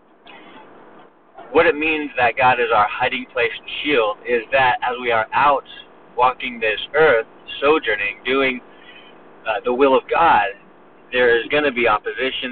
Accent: American